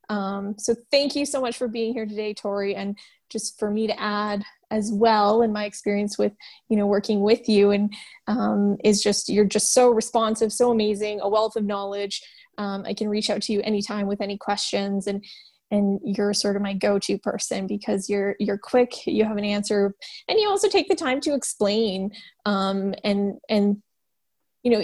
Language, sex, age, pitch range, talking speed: English, female, 10-29, 200-230 Hz, 200 wpm